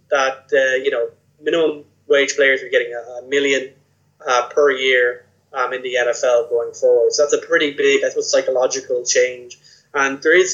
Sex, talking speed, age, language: male, 190 wpm, 20-39, English